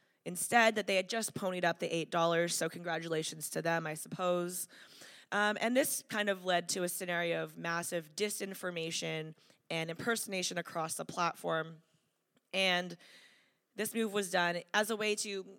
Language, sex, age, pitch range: English, female, 20-39, 170-210 Hz